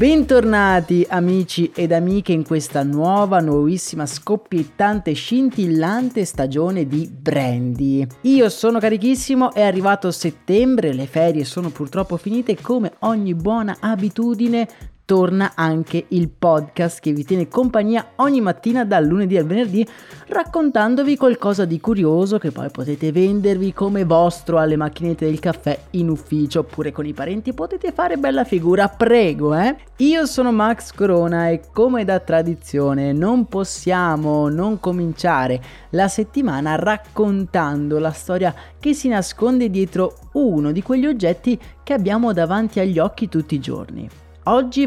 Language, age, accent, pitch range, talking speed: Italian, 30-49, native, 160-230 Hz, 135 wpm